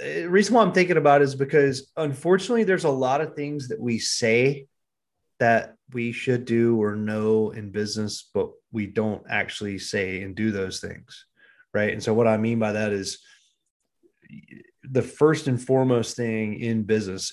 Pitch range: 100-125 Hz